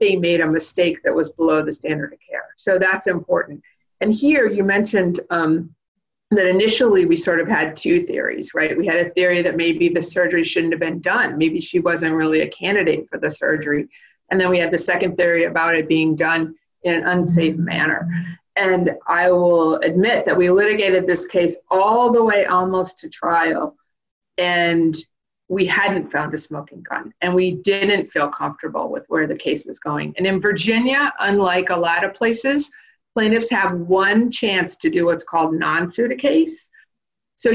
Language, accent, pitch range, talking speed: English, American, 170-220 Hz, 185 wpm